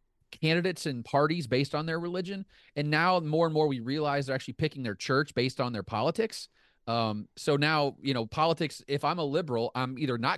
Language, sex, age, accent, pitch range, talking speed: English, male, 30-49, American, 125-165 Hz, 210 wpm